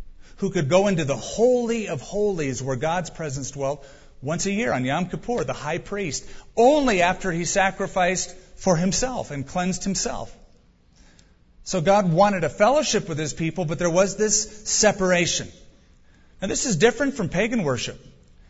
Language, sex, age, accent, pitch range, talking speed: English, male, 40-59, American, 135-195 Hz, 160 wpm